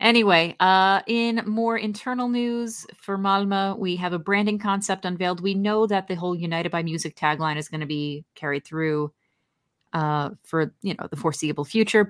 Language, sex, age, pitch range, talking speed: English, female, 30-49, 155-195 Hz, 180 wpm